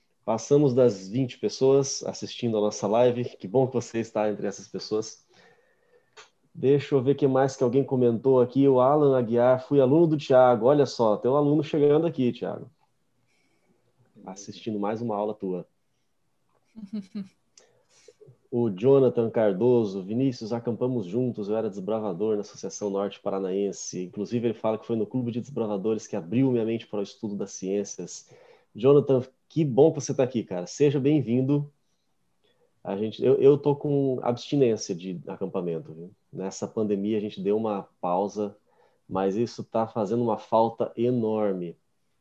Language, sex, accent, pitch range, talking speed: Portuguese, male, Brazilian, 110-140 Hz, 160 wpm